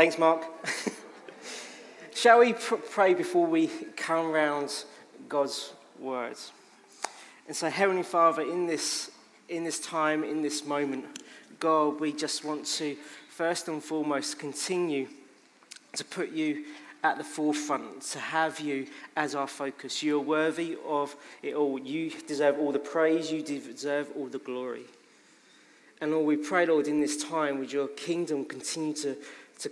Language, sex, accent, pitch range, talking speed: English, male, British, 145-160 Hz, 145 wpm